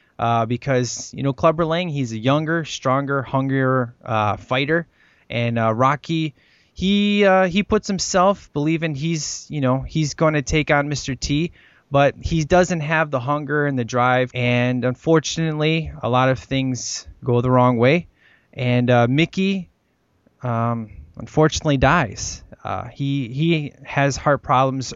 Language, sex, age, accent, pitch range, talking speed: English, male, 20-39, American, 120-145 Hz, 150 wpm